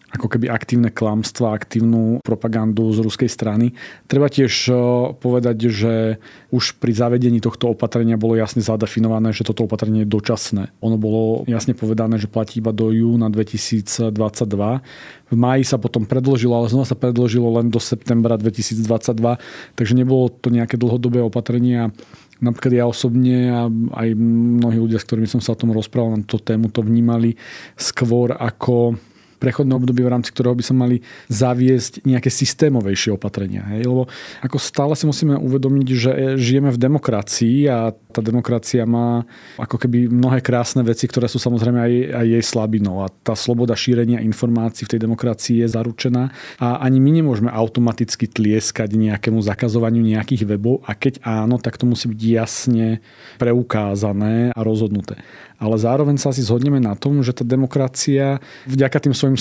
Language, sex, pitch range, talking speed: Slovak, male, 110-125 Hz, 160 wpm